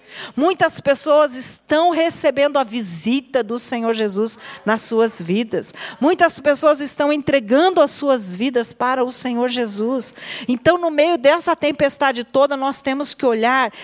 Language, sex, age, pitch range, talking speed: Portuguese, female, 50-69, 220-280 Hz, 145 wpm